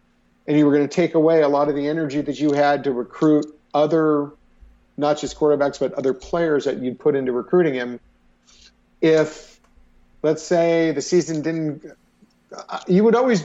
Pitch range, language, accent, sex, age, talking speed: 125-165 Hz, English, American, male, 50-69, 175 wpm